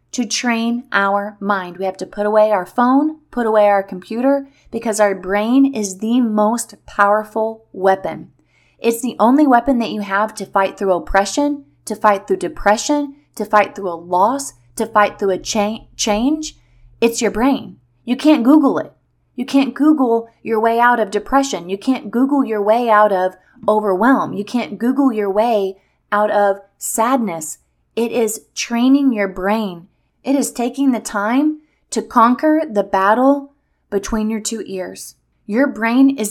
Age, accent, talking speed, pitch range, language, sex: 20-39, American, 165 wpm, 200-255 Hz, English, female